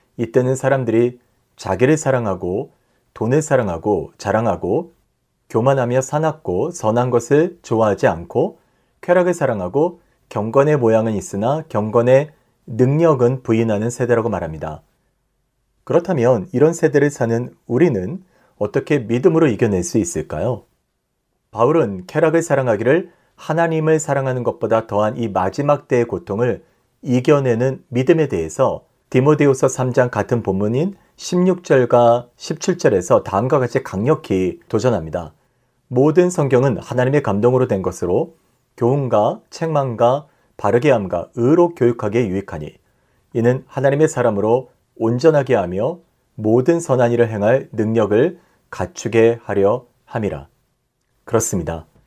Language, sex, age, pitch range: Korean, male, 40-59, 115-150 Hz